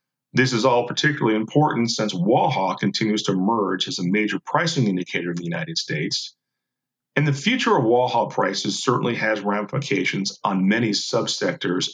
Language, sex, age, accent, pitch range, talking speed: English, male, 40-59, American, 110-165 Hz, 155 wpm